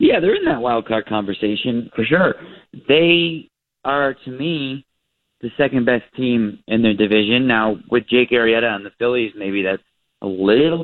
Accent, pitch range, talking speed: American, 115-145 Hz, 160 wpm